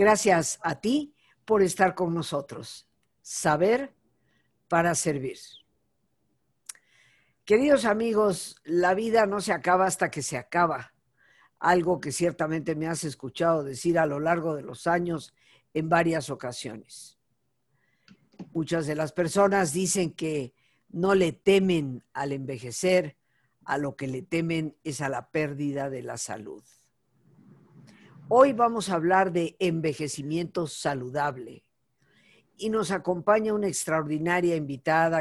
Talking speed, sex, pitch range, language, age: 125 wpm, female, 140-180 Hz, Spanish, 50-69